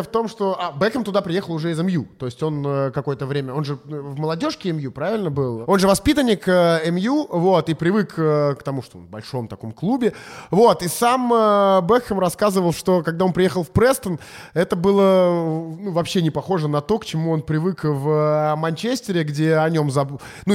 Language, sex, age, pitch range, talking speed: Russian, male, 20-39, 150-200 Hz, 195 wpm